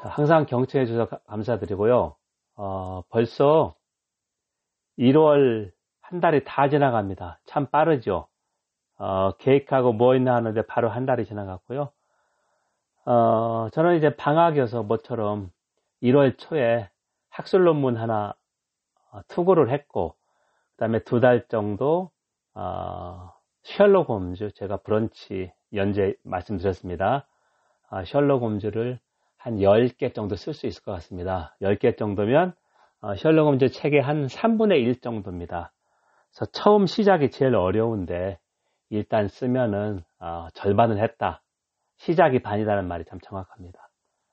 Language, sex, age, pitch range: Korean, male, 40-59, 100-130 Hz